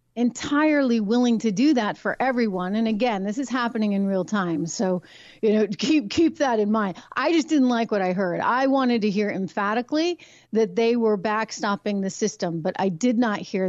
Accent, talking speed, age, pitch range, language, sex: American, 200 wpm, 40-59, 195-245 Hz, English, female